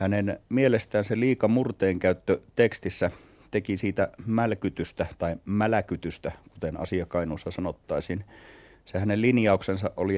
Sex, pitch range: male, 95-115 Hz